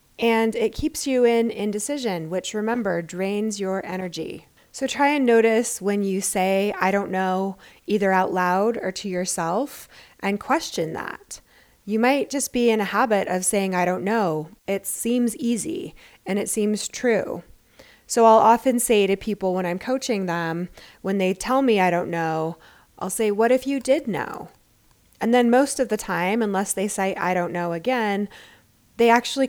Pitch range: 185-230 Hz